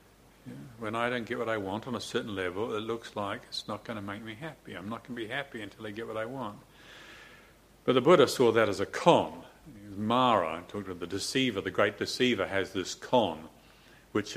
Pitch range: 95-115 Hz